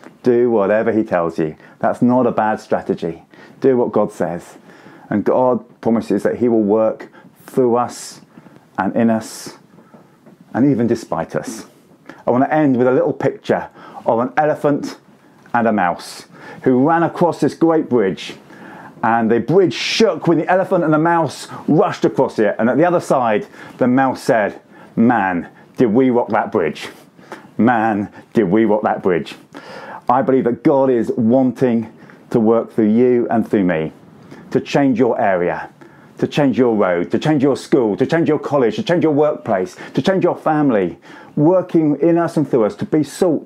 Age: 40-59